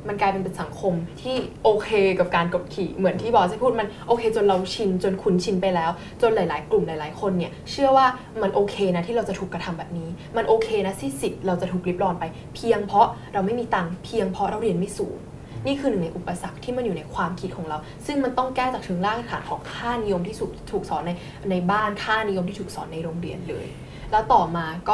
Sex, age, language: female, 10-29, Thai